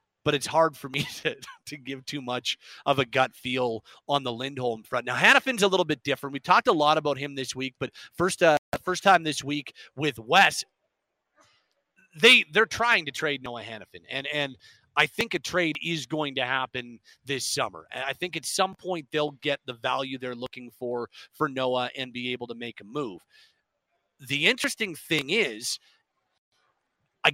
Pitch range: 130-165 Hz